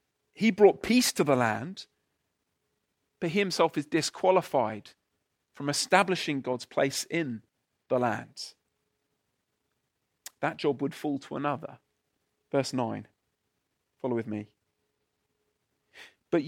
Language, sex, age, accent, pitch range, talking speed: English, male, 40-59, British, 135-190 Hz, 110 wpm